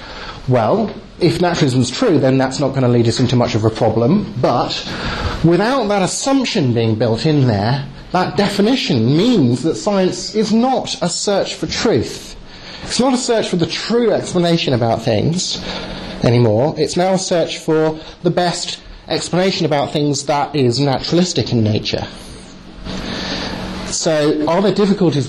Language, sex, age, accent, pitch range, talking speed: English, male, 30-49, British, 125-190 Hz, 155 wpm